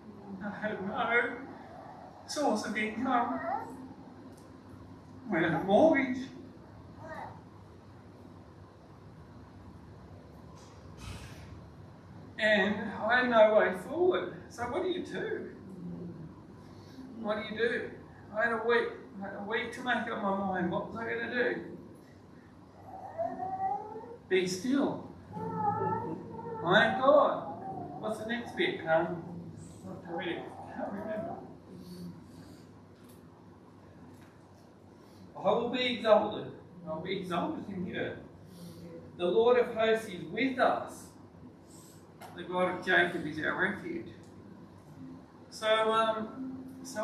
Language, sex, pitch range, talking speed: English, male, 165-235 Hz, 105 wpm